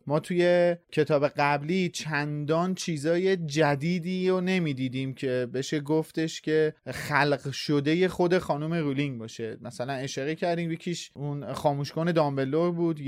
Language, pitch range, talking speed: Persian, 140-175 Hz, 130 wpm